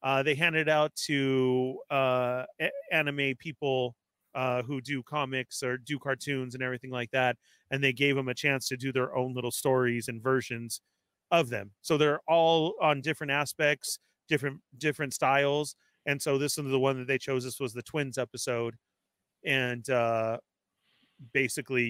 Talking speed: 175 wpm